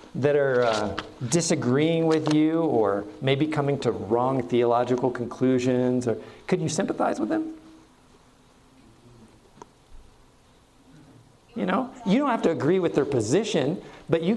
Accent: American